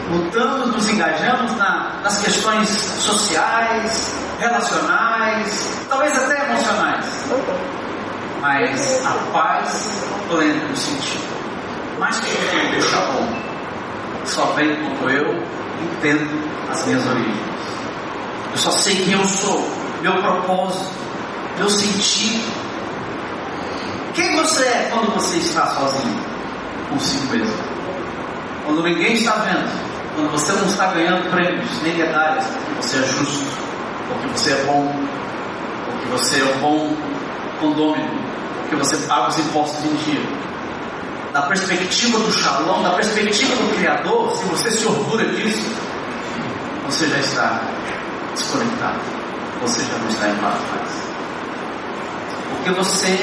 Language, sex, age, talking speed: Portuguese, male, 40-59, 120 wpm